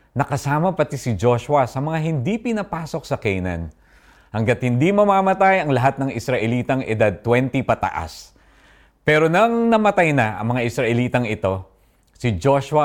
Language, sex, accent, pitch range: Filipino, male, native, 105-160 Hz